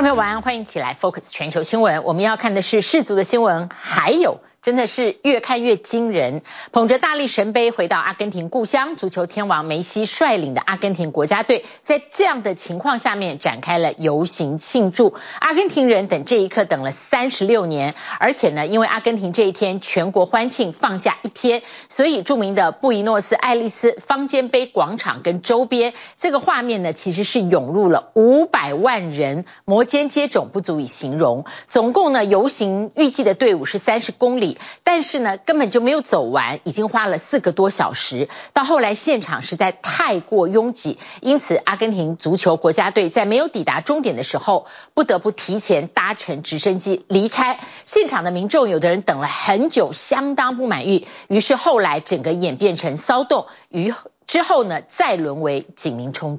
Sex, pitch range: female, 175-255 Hz